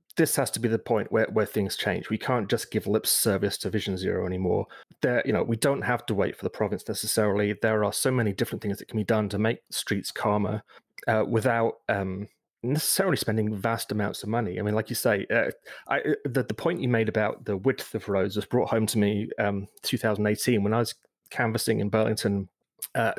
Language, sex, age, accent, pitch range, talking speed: English, male, 30-49, British, 110-135 Hz, 225 wpm